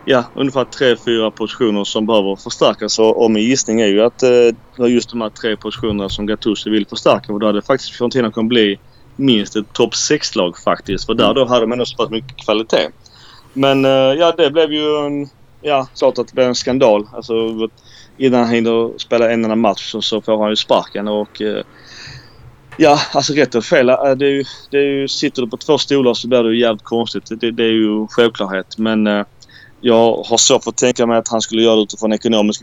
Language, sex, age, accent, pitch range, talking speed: Swedish, male, 20-39, native, 110-125 Hz, 220 wpm